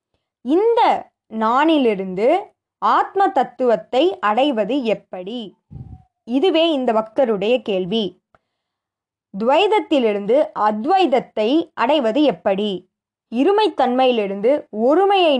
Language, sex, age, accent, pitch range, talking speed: Tamil, female, 20-39, native, 210-295 Hz, 60 wpm